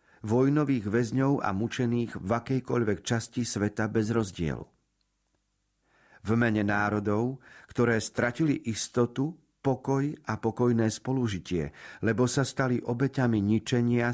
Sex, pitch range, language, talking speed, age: male, 100-125 Hz, Slovak, 105 wpm, 50-69